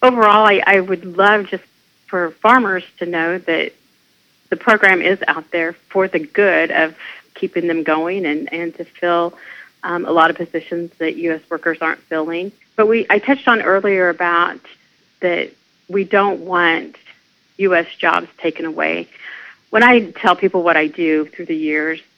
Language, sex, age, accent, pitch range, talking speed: English, female, 40-59, American, 160-195 Hz, 170 wpm